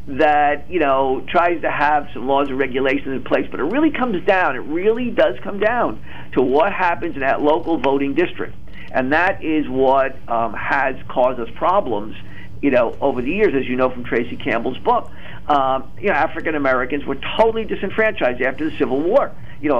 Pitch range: 130-170 Hz